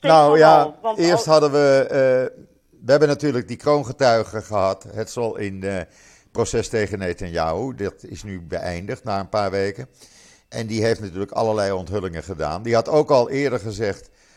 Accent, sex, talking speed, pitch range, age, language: Dutch, male, 165 wpm, 100-135 Hz, 50-69, Dutch